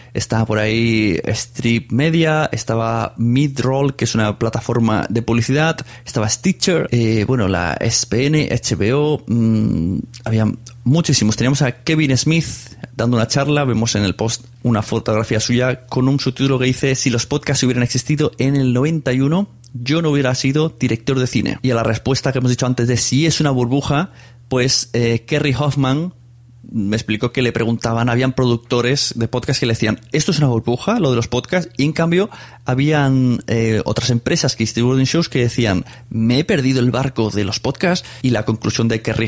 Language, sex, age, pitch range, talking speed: Spanish, male, 30-49, 115-140 Hz, 180 wpm